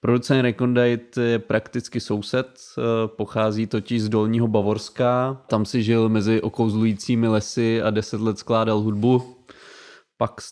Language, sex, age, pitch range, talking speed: Czech, male, 20-39, 110-125 Hz, 130 wpm